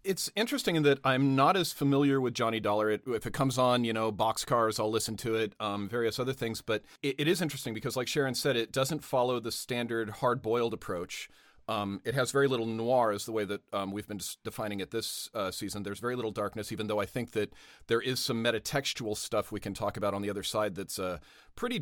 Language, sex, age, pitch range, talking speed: English, male, 40-59, 105-125 Hz, 240 wpm